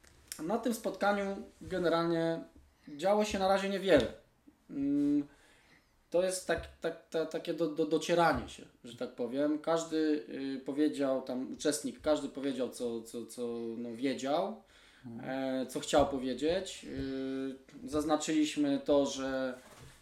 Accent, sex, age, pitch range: native, male, 20-39, 135-170 Hz